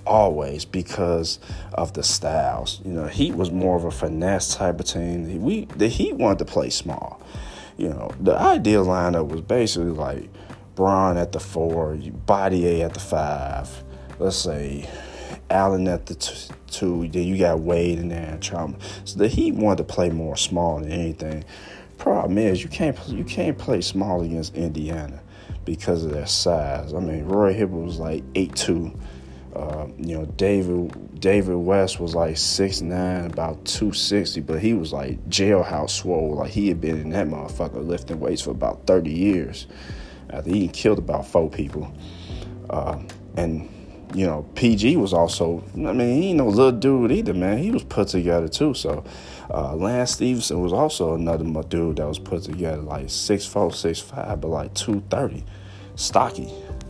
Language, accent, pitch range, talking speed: English, American, 80-95 Hz, 175 wpm